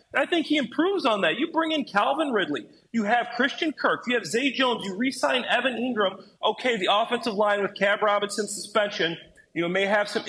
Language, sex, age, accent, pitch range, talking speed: English, male, 30-49, American, 210-280 Hz, 210 wpm